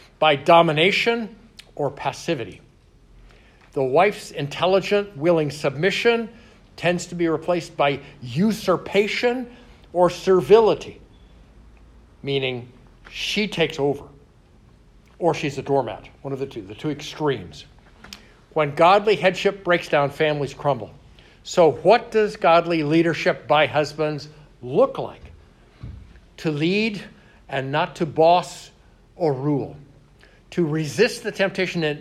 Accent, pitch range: American, 145-195 Hz